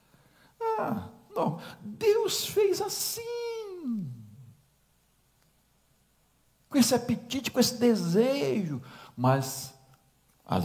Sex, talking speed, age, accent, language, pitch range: male, 60 wpm, 60-79, Brazilian, Portuguese, 125-215 Hz